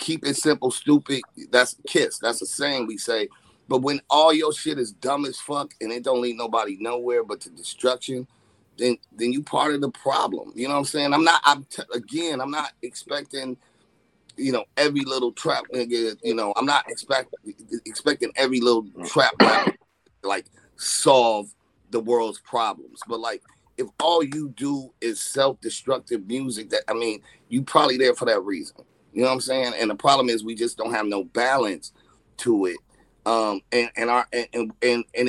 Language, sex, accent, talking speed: English, male, American, 190 wpm